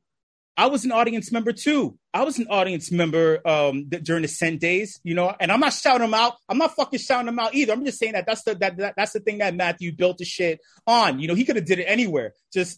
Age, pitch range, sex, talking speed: 30-49, 160-195 Hz, male, 275 wpm